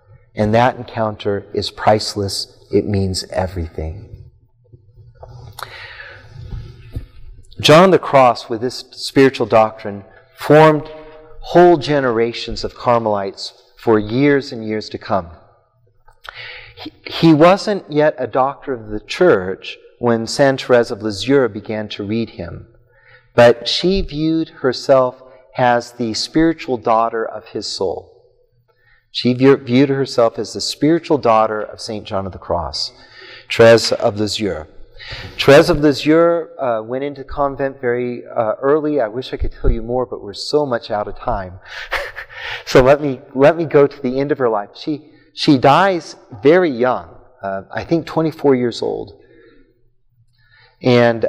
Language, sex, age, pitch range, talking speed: English, male, 40-59, 110-145 Hz, 135 wpm